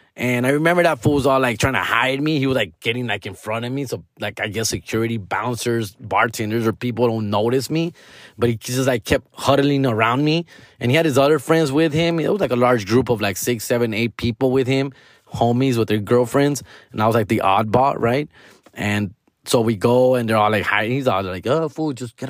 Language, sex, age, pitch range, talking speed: English, male, 20-39, 115-155 Hz, 245 wpm